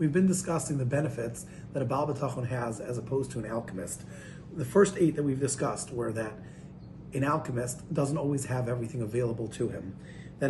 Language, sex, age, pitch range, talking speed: English, male, 30-49, 125-155 Hz, 185 wpm